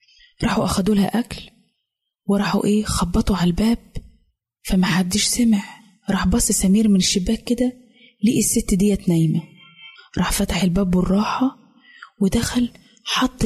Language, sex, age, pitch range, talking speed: Arabic, female, 20-39, 200-240 Hz, 120 wpm